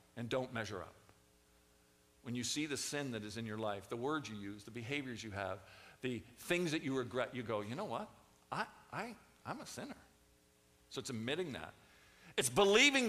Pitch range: 105-155 Hz